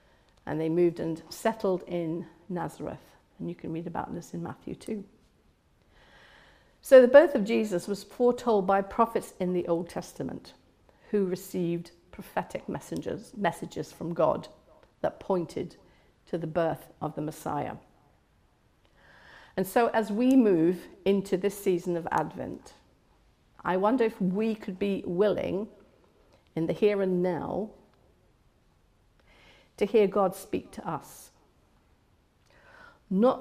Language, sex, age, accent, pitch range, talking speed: English, female, 50-69, British, 175-210 Hz, 130 wpm